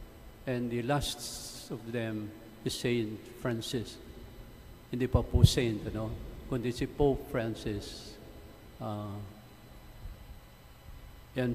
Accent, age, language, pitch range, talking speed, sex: Filipino, 50-69, English, 110-130 Hz, 100 wpm, male